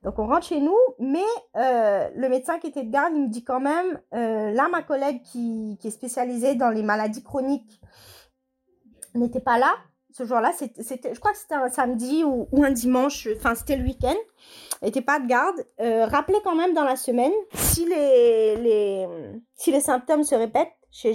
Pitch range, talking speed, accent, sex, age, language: 220-280 Hz, 190 wpm, French, female, 30-49, French